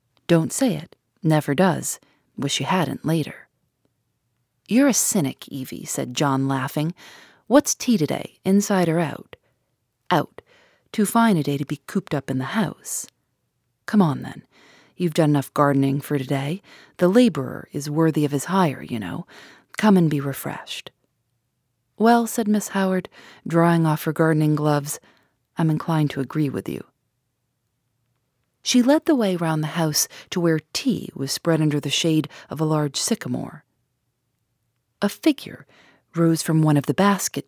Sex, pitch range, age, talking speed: female, 135-190 Hz, 40-59, 155 wpm